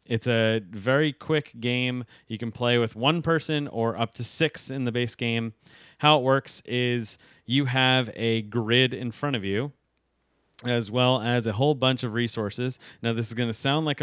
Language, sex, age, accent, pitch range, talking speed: English, male, 30-49, American, 110-140 Hz, 195 wpm